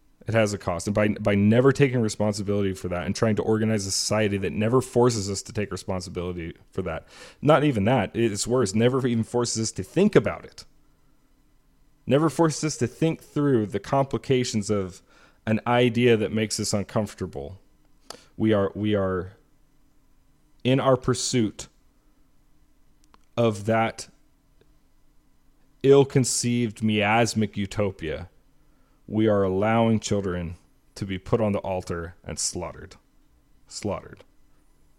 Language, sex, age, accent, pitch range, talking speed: English, male, 30-49, American, 90-115 Hz, 140 wpm